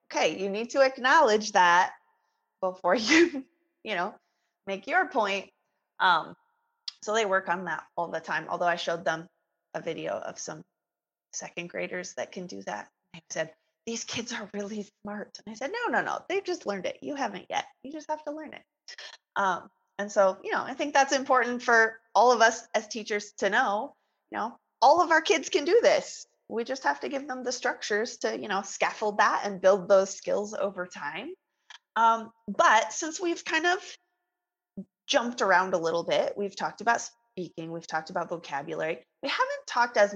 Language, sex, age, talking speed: English, female, 30-49, 195 wpm